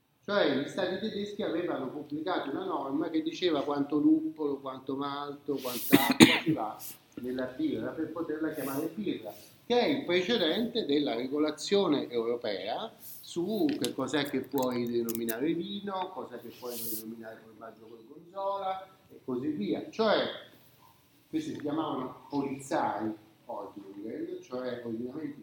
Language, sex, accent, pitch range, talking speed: Italian, male, native, 130-190 Hz, 130 wpm